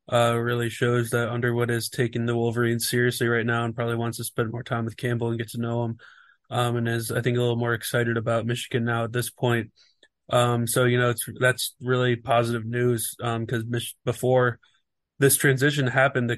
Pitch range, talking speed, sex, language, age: 115-125 Hz, 215 wpm, male, English, 20-39